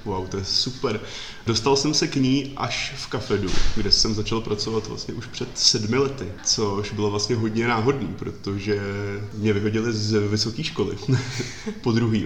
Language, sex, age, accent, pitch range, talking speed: Czech, male, 20-39, native, 105-115 Hz, 165 wpm